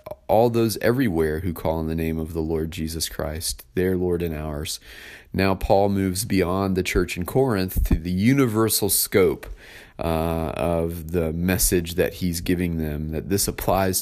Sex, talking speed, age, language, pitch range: male, 170 wpm, 30-49, English, 80-95 Hz